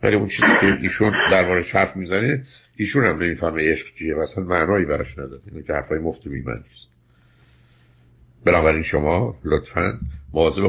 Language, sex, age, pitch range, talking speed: Persian, male, 60-79, 75-95 Hz, 145 wpm